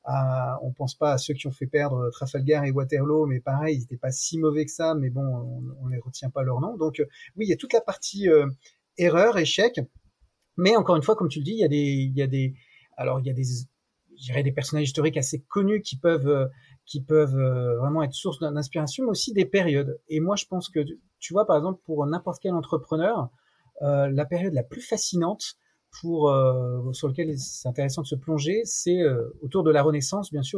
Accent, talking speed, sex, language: French, 230 wpm, male, French